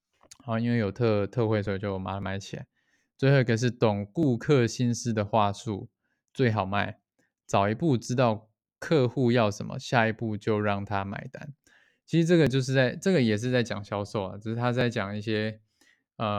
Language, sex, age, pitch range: Chinese, male, 20-39, 105-135 Hz